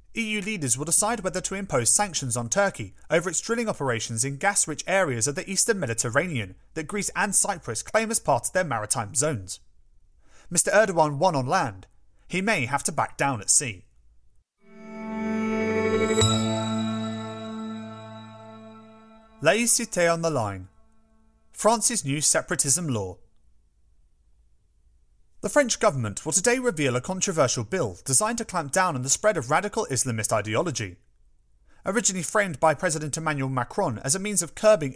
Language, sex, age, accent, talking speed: English, male, 30-49, British, 145 wpm